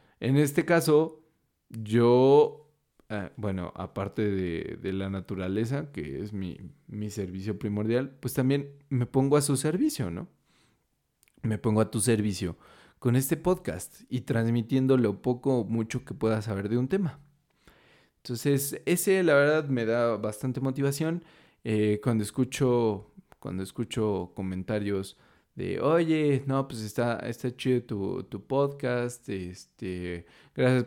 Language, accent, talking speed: Spanish, Mexican, 135 wpm